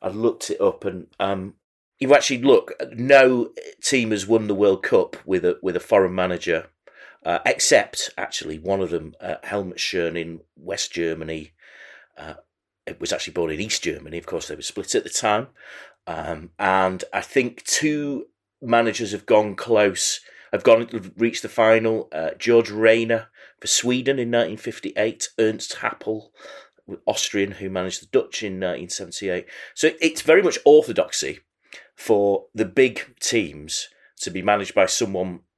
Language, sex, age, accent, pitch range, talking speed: English, male, 30-49, British, 95-125 Hz, 160 wpm